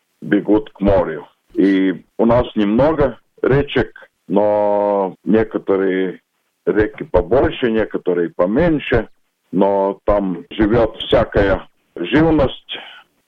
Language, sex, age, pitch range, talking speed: Russian, male, 50-69, 95-110 Hz, 85 wpm